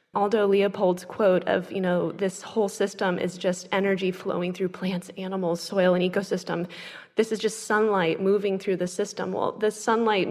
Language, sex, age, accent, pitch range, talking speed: English, female, 20-39, American, 185-215 Hz, 175 wpm